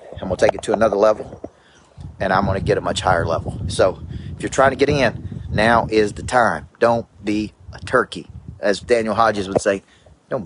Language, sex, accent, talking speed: English, male, American, 220 wpm